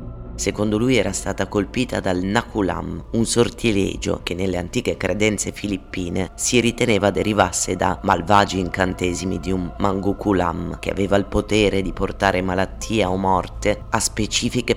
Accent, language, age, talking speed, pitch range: native, Italian, 30-49, 140 wpm, 90-105 Hz